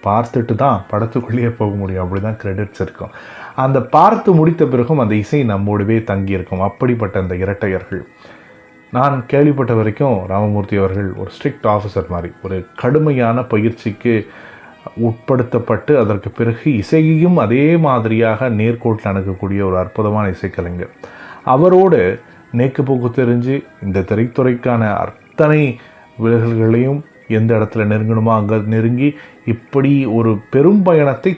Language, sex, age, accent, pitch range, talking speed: Tamil, male, 30-49, native, 100-130 Hz, 115 wpm